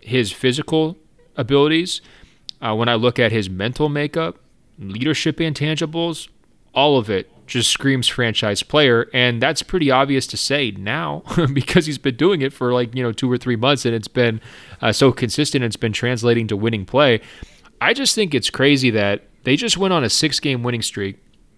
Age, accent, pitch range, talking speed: 30-49, American, 115-140 Hz, 185 wpm